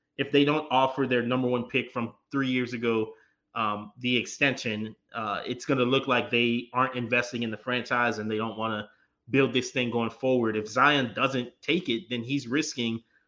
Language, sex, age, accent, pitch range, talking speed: English, male, 20-39, American, 115-130 Hz, 205 wpm